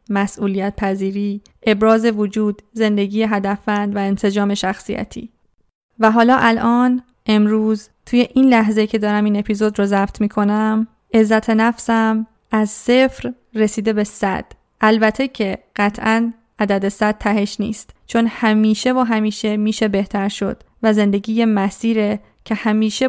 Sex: female